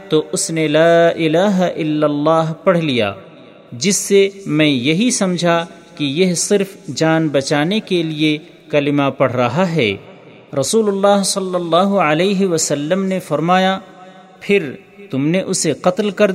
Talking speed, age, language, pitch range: 145 wpm, 40-59, Urdu, 145-190 Hz